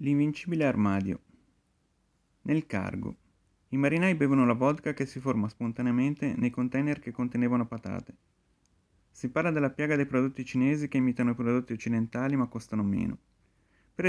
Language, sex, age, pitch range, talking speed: Italian, male, 30-49, 110-135 Hz, 145 wpm